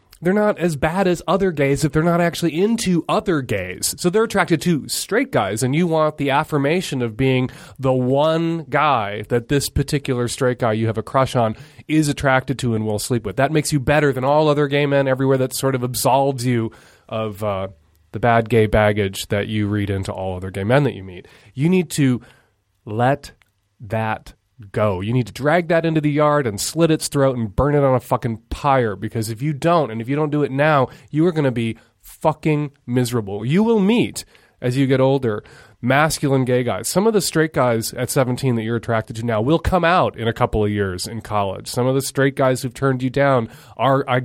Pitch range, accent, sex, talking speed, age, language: 115-145 Hz, American, male, 225 wpm, 30-49, English